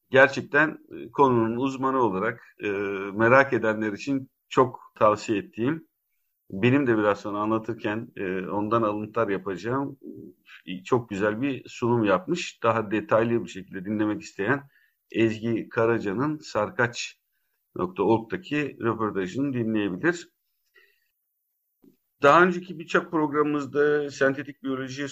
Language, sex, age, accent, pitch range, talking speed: Turkish, male, 50-69, native, 115-150 Hz, 105 wpm